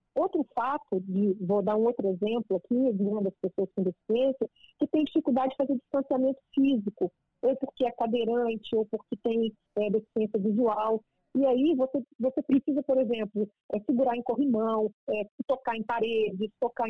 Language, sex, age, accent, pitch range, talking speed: Portuguese, female, 40-59, Brazilian, 210-265 Hz, 175 wpm